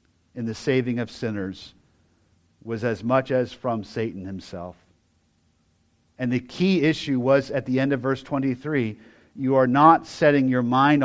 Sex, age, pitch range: male, 50-69, 105-135 Hz